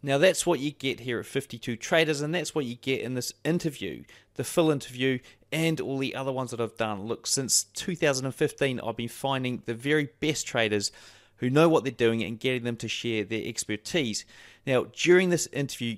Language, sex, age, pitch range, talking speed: English, male, 30-49, 120-150 Hz, 205 wpm